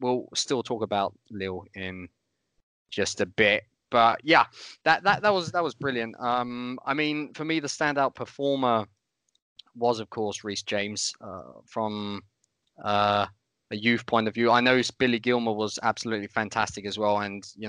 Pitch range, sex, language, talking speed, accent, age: 105-125 Hz, male, English, 170 wpm, British, 20-39